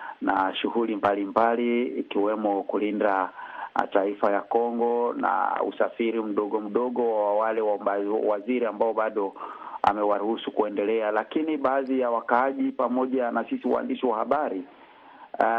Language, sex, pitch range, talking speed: Swahili, male, 120-145 Hz, 115 wpm